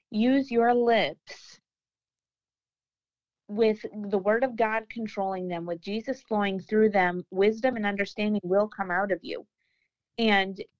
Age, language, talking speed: 30-49, English, 135 wpm